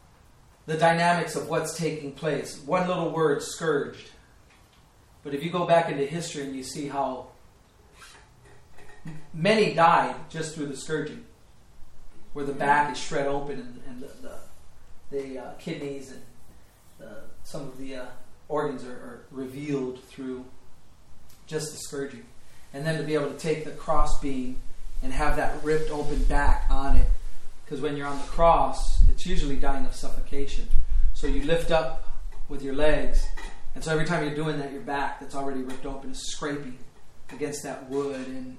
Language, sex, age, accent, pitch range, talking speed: English, male, 40-59, American, 130-160 Hz, 165 wpm